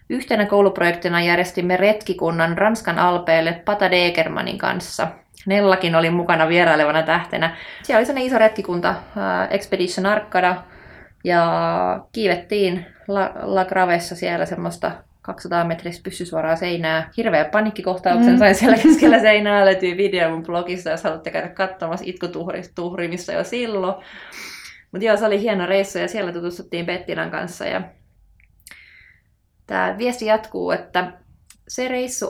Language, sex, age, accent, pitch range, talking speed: Finnish, female, 20-39, native, 175-205 Hz, 125 wpm